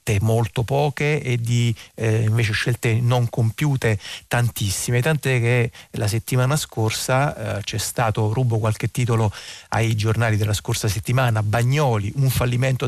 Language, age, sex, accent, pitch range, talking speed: Italian, 40-59, male, native, 110-130 Hz, 135 wpm